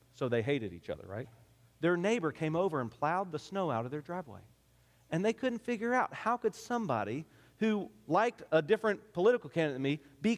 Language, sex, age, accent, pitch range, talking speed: English, male, 40-59, American, 120-190 Hz, 200 wpm